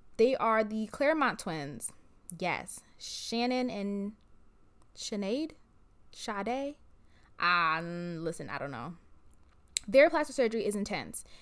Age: 20-39